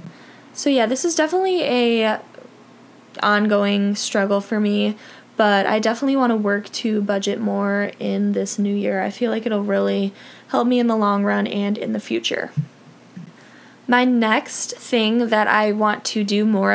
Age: 10-29